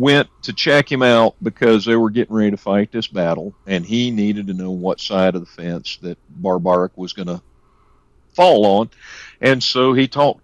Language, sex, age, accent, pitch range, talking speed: English, male, 50-69, American, 90-115 Hz, 200 wpm